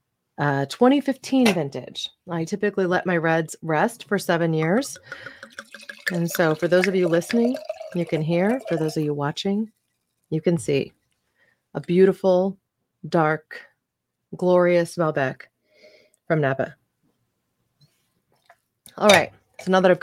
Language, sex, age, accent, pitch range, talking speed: English, female, 30-49, American, 155-200 Hz, 130 wpm